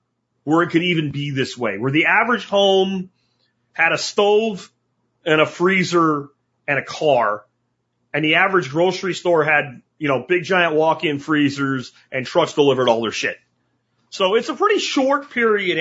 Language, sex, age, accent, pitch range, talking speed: English, male, 30-49, American, 135-195 Hz, 165 wpm